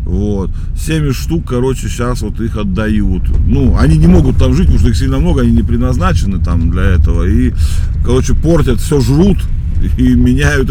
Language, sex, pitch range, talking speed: Russian, male, 80-105 Hz, 180 wpm